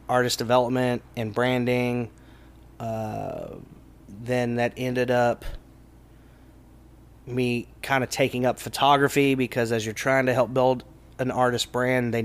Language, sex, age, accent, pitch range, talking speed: English, male, 20-39, American, 120-140 Hz, 125 wpm